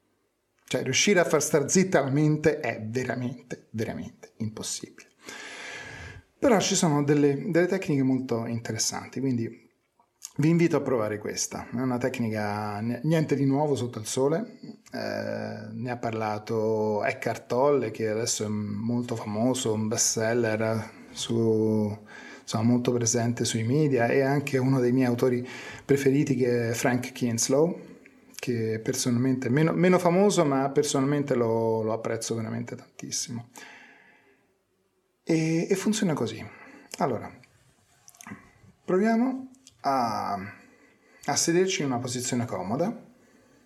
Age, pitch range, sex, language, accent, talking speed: 30-49, 115-150 Hz, male, Italian, native, 120 wpm